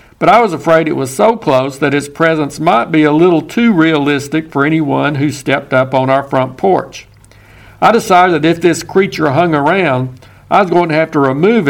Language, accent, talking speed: English, American, 210 wpm